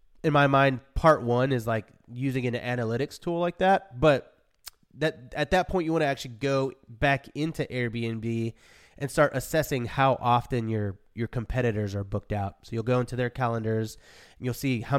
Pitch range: 115-140 Hz